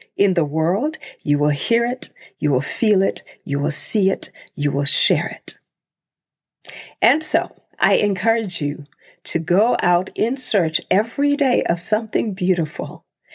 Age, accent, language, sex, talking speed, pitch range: 50-69, American, English, female, 155 wpm, 165-255 Hz